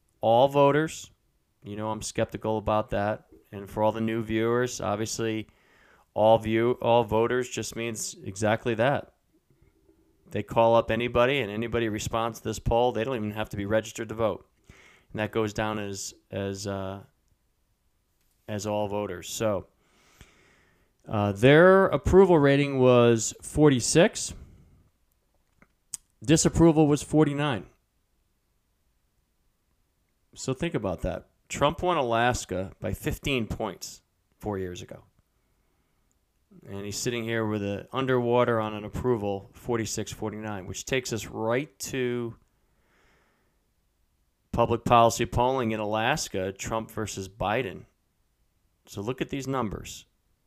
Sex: male